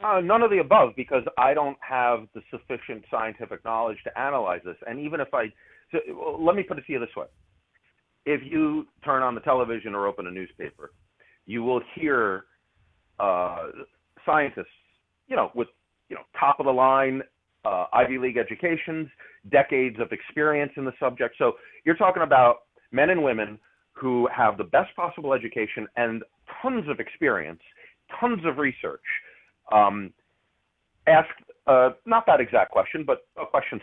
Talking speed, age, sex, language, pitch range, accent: 165 wpm, 40-59, male, English, 120-195 Hz, American